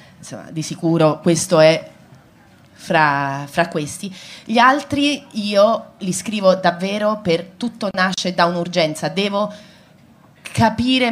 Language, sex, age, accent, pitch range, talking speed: Italian, female, 30-49, native, 165-225 Hz, 110 wpm